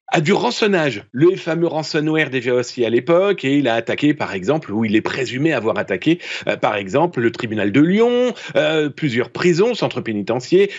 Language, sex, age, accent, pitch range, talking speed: French, male, 40-59, French, 135-185 Hz, 190 wpm